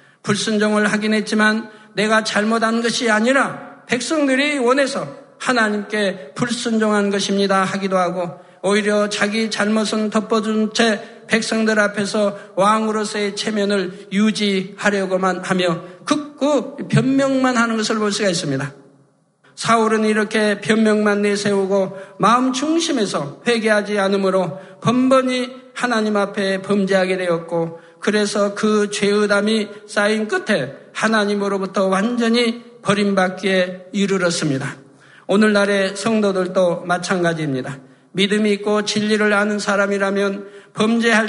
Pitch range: 195-225 Hz